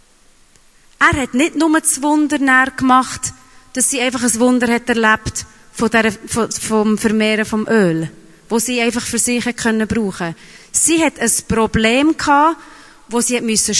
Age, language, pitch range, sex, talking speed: 30-49, German, 215-280 Hz, female, 160 wpm